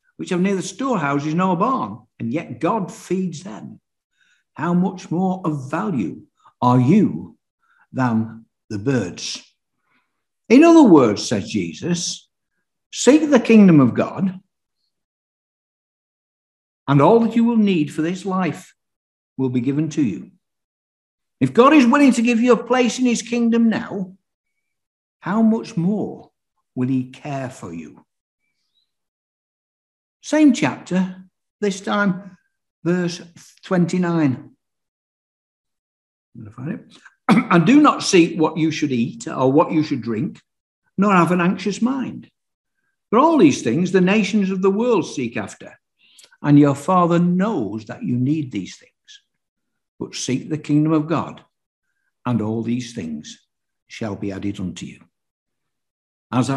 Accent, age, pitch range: British, 60-79, 135-220 Hz